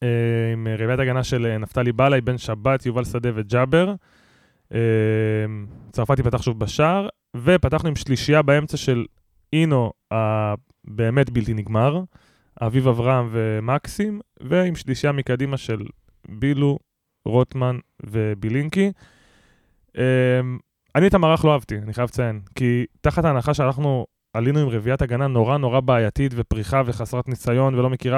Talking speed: 125 wpm